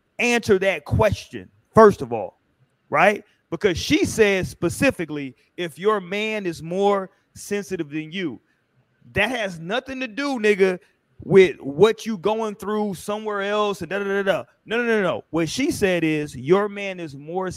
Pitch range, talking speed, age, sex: 145-195 Hz, 155 wpm, 30-49, male